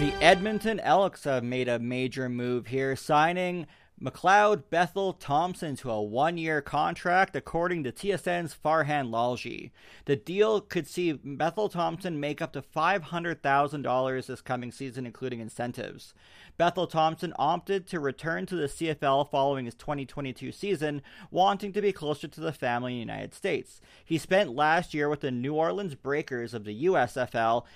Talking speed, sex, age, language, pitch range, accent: 150 wpm, male, 30-49, English, 130-170 Hz, American